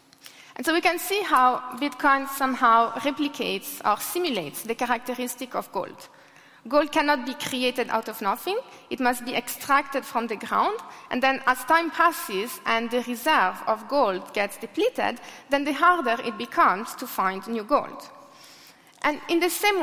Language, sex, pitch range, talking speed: English, female, 230-310 Hz, 165 wpm